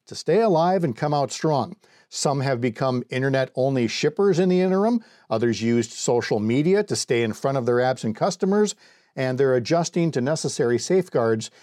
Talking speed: 170 wpm